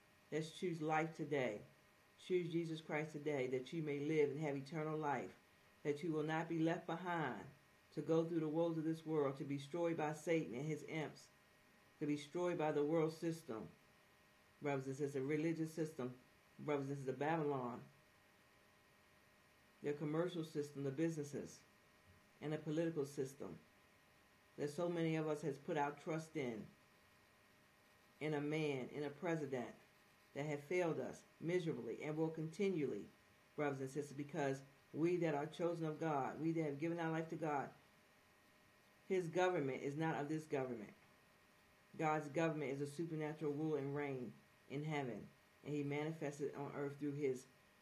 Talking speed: 165 wpm